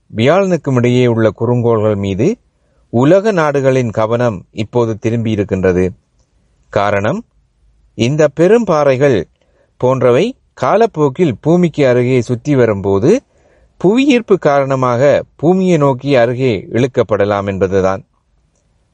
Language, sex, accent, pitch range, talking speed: Tamil, male, native, 105-145 Hz, 80 wpm